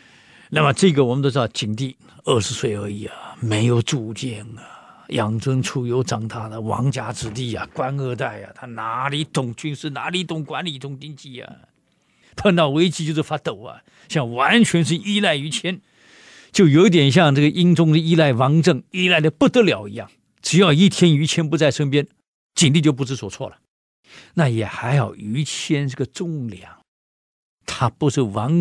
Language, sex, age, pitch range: Chinese, male, 50-69, 120-165 Hz